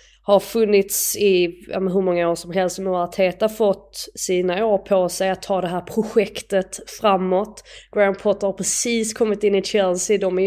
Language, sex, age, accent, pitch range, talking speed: Swedish, female, 20-39, native, 185-220 Hz, 185 wpm